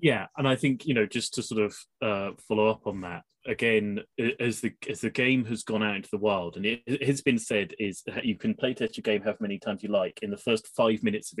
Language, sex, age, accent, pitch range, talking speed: English, male, 20-39, British, 105-130 Hz, 260 wpm